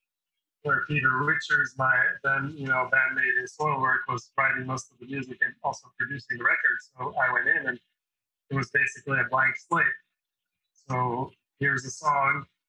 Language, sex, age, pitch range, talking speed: English, male, 20-39, 130-175 Hz, 175 wpm